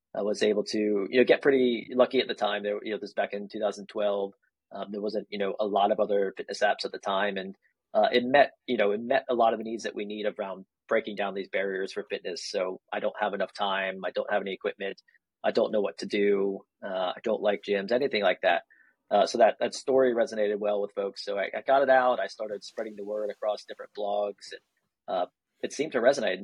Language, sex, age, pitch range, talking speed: English, male, 30-49, 100-110 Hz, 250 wpm